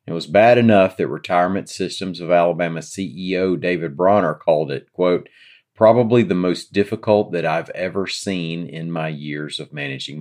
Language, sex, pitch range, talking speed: English, male, 75-95 Hz, 165 wpm